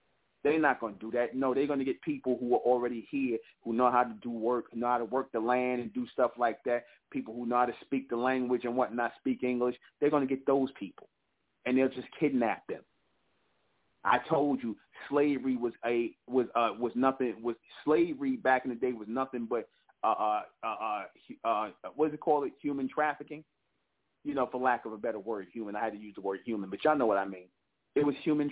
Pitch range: 120-145 Hz